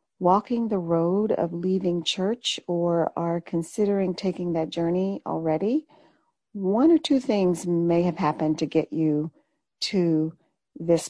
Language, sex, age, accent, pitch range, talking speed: English, female, 40-59, American, 160-190 Hz, 135 wpm